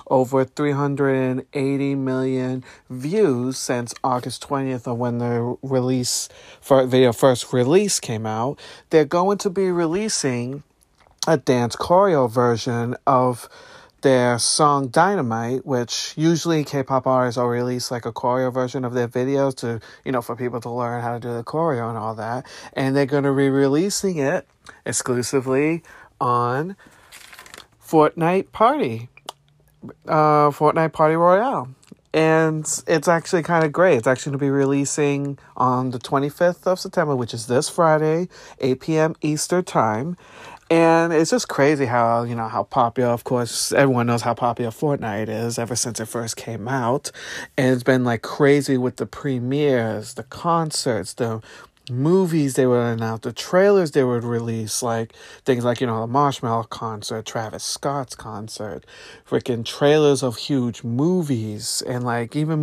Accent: American